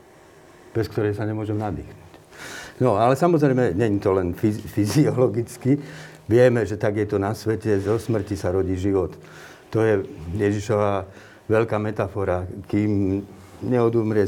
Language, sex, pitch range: Slovak, male, 105-130 Hz